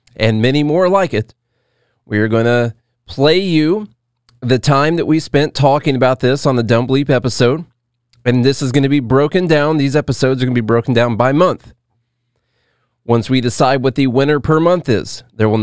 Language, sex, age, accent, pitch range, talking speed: English, male, 30-49, American, 110-135 Hz, 205 wpm